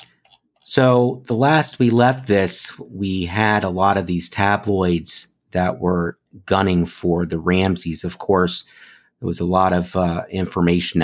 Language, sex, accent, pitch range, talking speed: English, male, American, 85-100 Hz, 150 wpm